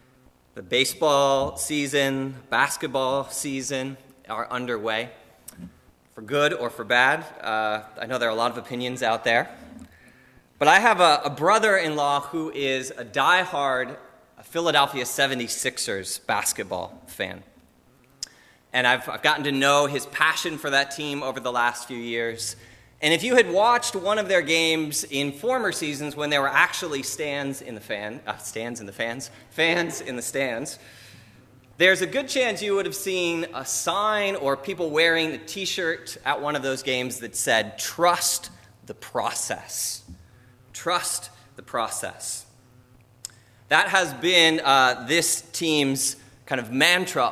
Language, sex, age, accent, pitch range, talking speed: English, male, 30-49, American, 120-160 Hz, 150 wpm